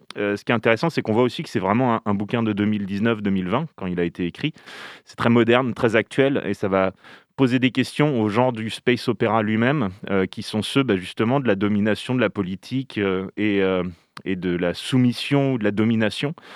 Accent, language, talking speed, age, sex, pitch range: French, French, 215 wpm, 30-49, male, 100-130 Hz